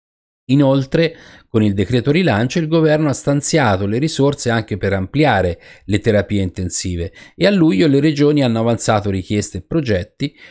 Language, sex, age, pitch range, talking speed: Italian, male, 30-49, 95-125 Hz, 155 wpm